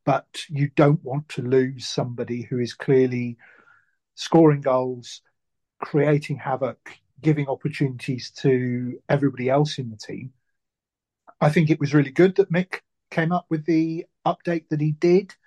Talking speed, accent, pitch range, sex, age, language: 145 wpm, British, 130-155 Hz, male, 40-59, English